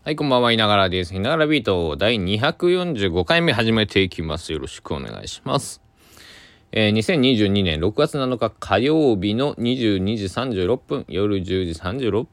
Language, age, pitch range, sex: Japanese, 20-39, 90-140 Hz, male